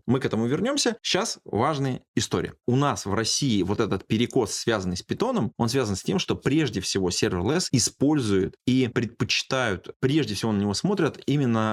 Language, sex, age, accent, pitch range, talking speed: Russian, male, 20-39, native, 100-130 Hz, 175 wpm